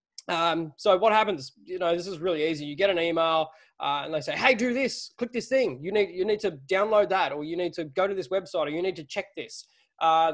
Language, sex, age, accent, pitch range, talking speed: English, male, 20-39, Australian, 155-195 Hz, 265 wpm